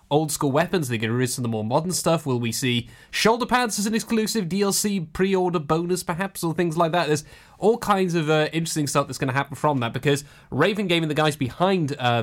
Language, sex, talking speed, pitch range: English, male, 245 wpm, 120-170 Hz